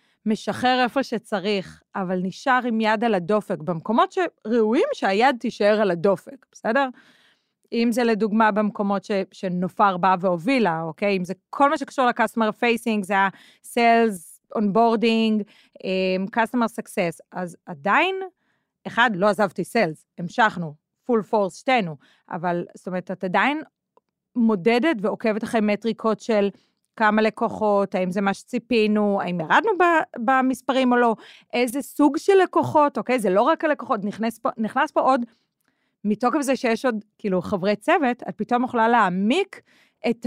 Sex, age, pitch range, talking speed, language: female, 30-49, 195-250 Hz, 140 wpm, Hebrew